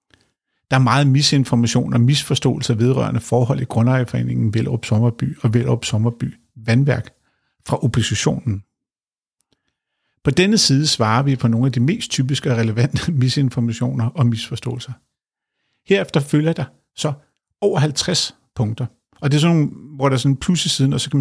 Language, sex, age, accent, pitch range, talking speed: Danish, male, 50-69, native, 115-140 Hz, 155 wpm